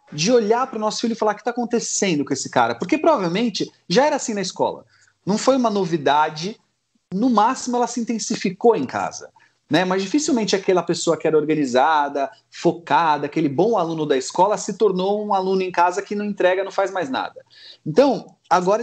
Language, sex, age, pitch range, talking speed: Portuguese, male, 30-49, 155-220 Hz, 200 wpm